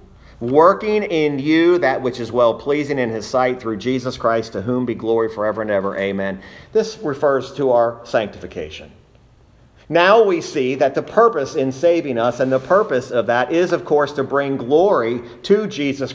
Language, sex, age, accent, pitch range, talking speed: English, male, 40-59, American, 125-200 Hz, 180 wpm